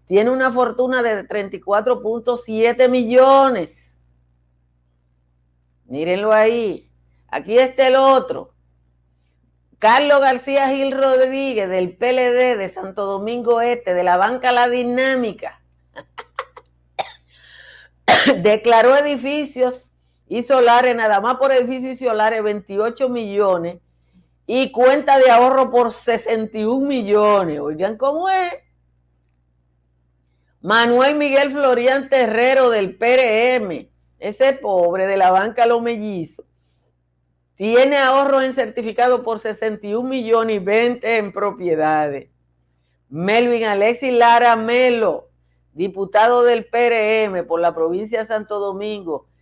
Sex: female